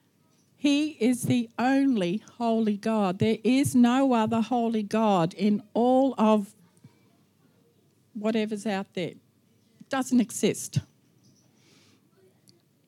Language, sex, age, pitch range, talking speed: English, female, 50-69, 200-245 Hz, 100 wpm